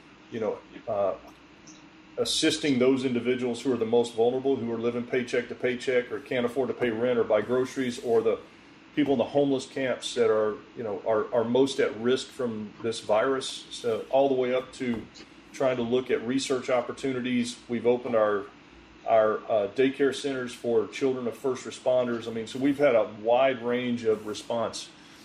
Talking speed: 190 wpm